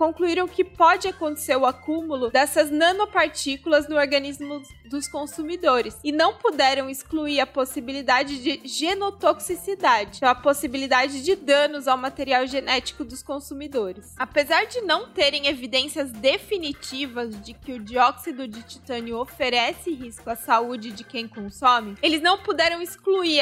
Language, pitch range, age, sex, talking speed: Portuguese, 255-325 Hz, 20-39, female, 135 wpm